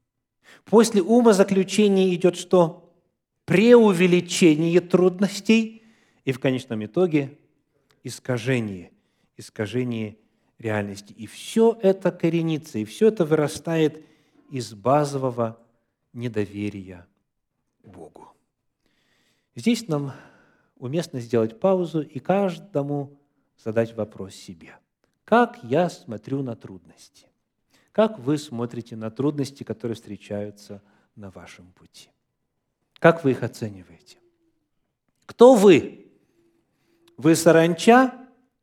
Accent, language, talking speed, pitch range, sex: native, Russian, 90 wpm, 115-185 Hz, male